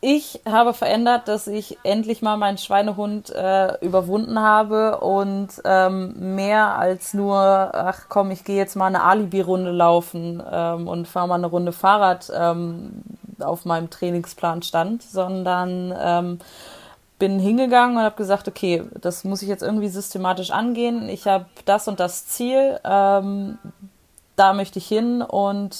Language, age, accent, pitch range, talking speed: German, 20-39, German, 185-220 Hz, 150 wpm